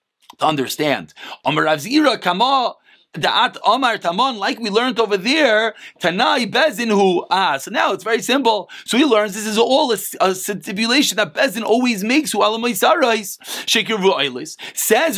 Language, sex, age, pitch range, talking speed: English, male, 30-49, 200-260 Hz, 140 wpm